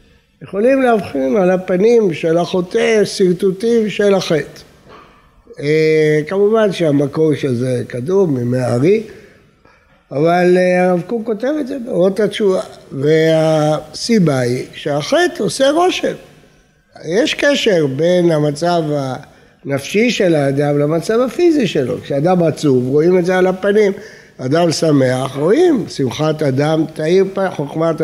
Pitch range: 150-220 Hz